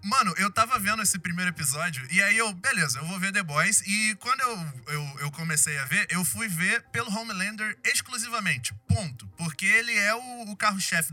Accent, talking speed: Brazilian, 200 wpm